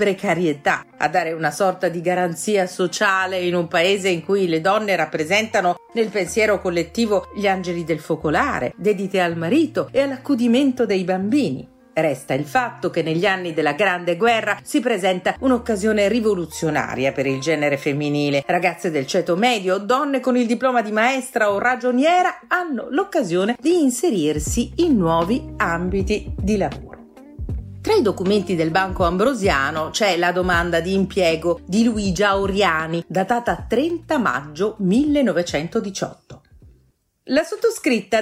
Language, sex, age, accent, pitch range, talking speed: Italian, female, 40-59, native, 180-275 Hz, 135 wpm